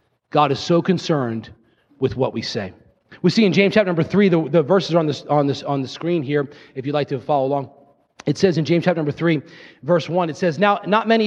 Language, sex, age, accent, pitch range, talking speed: English, male, 30-49, American, 150-200 Hz, 235 wpm